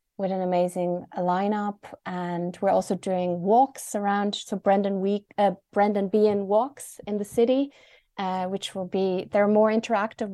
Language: English